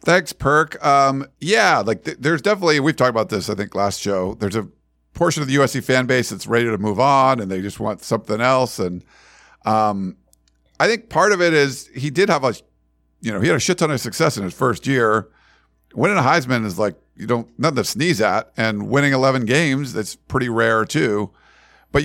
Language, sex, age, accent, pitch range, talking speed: English, male, 50-69, American, 105-140 Hz, 215 wpm